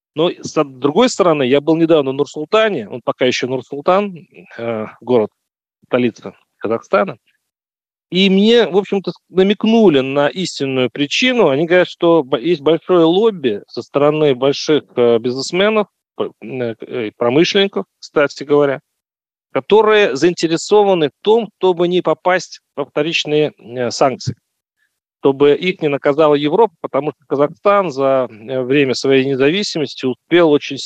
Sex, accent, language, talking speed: male, native, Russian, 120 wpm